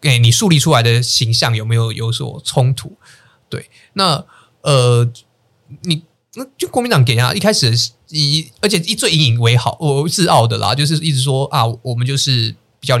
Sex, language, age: male, Chinese, 20-39